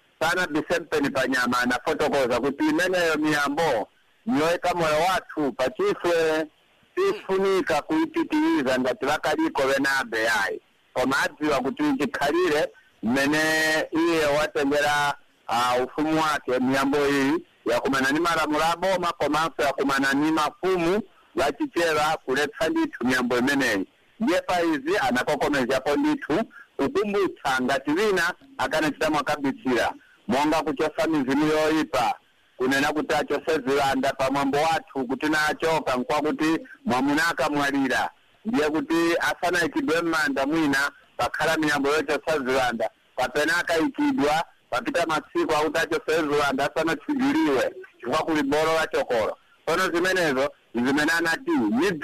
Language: English